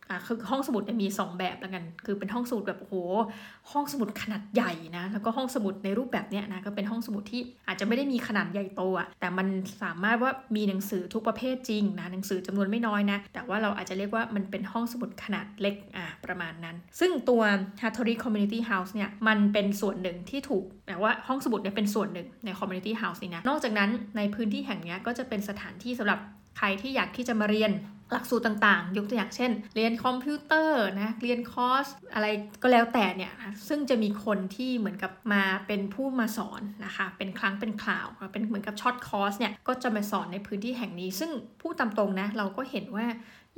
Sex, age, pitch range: female, 20-39, 200-235 Hz